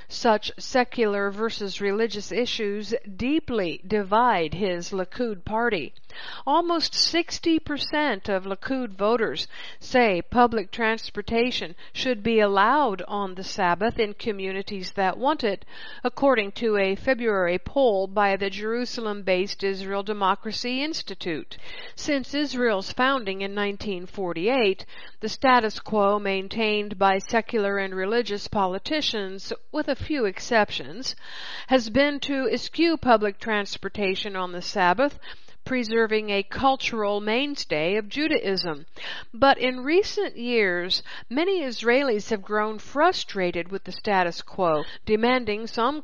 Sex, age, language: female, 50-69, English